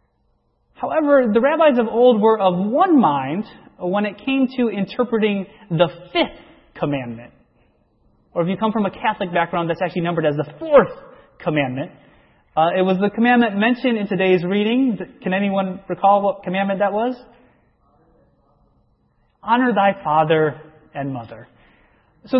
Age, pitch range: 30-49, 170-240 Hz